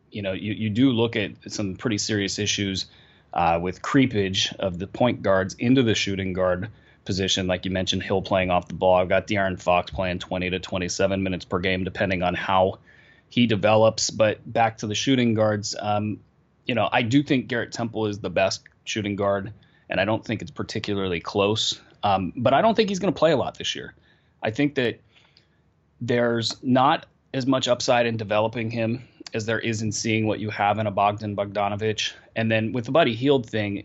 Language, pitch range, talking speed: English, 95-120 Hz, 205 wpm